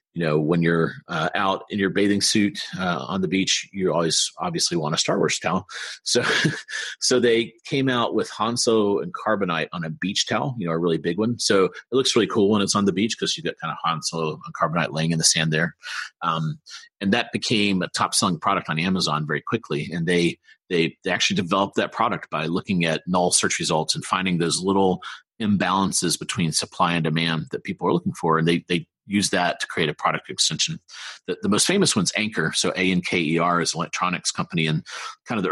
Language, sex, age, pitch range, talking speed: English, male, 30-49, 85-105 Hz, 230 wpm